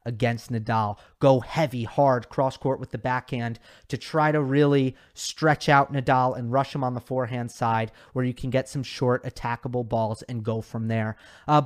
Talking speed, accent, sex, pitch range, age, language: 185 wpm, American, male, 120-160 Hz, 30-49, English